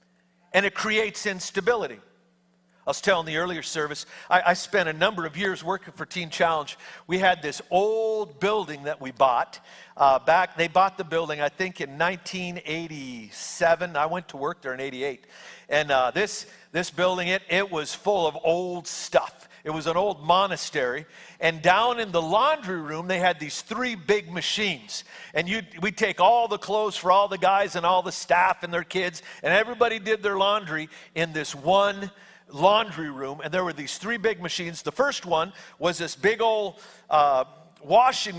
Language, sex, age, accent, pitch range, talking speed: English, male, 50-69, American, 165-210 Hz, 185 wpm